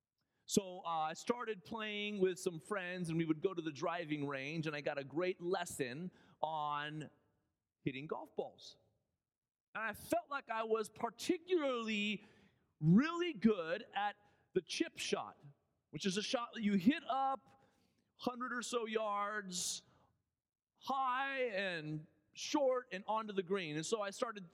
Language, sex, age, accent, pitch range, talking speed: English, male, 30-49, American, 155-225 Hz, 150 wpm